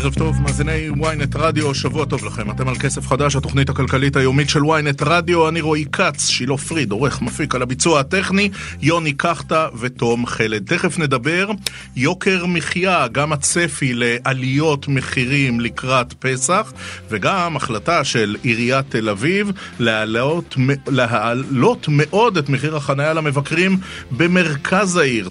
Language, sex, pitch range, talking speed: Hebrew, male, 125-160 Hz, 135 wpm